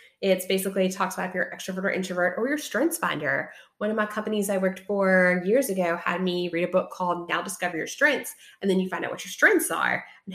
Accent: American